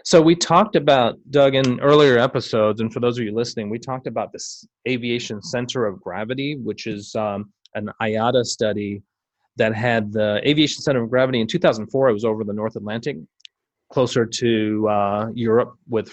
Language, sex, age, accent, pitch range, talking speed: English, male, 30-49, American, 105-130 Hz, 180 wpm